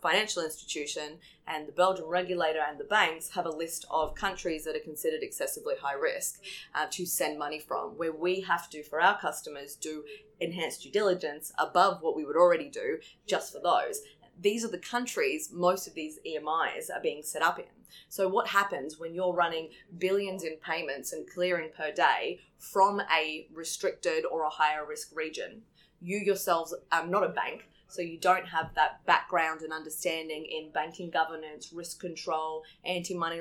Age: 20-39